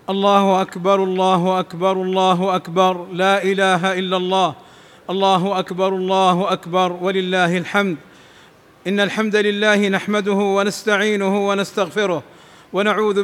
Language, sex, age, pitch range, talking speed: Arabic, male, 40-59, 195-220 Hz, 105 wpm